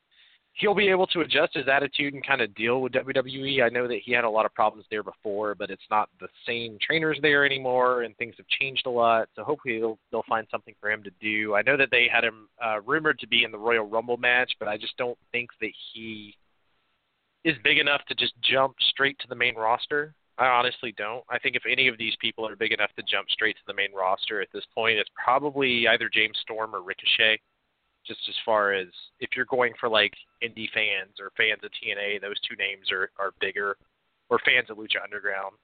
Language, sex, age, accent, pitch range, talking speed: English, male, 30-49, American, 105-135 Hz, 230 wpm